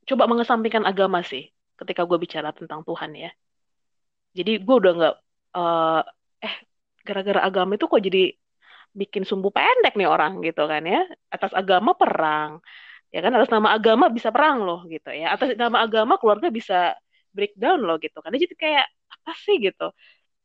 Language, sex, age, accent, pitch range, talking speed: Indonesian, female, 20-39, native, 180-245 Hz, 165 wpm